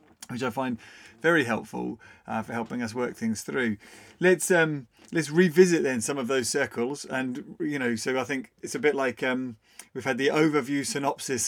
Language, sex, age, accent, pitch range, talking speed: English, male, 30-49, British, 115-140 Hz, 195 wpm